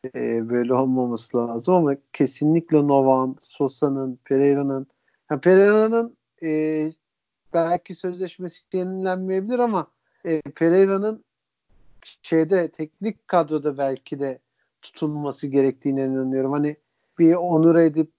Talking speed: 100 wpm